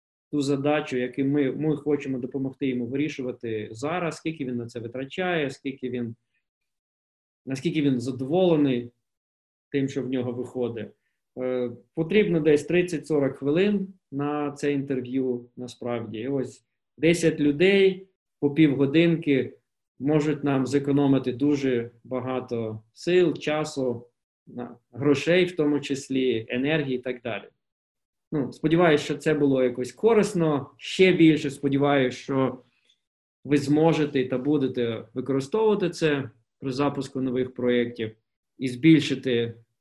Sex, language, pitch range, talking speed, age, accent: male, Ukrainian, 125-155 Hz, 115 wpm, 20-39, native